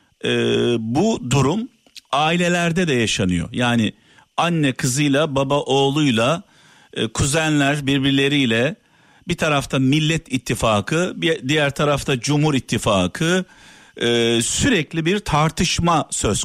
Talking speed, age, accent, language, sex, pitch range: 100 wpm, 50-69, native, Turkish, male, 135-200 Hz